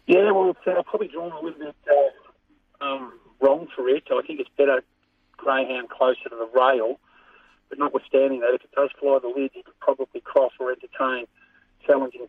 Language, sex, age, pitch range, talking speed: English, male, 40-59, 115-185 Hz, 185 wpm